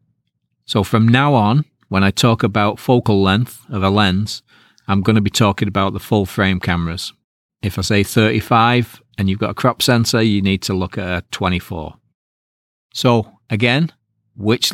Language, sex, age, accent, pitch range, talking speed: English, male, 40-59, British, 95-115 Hz, 170 wpm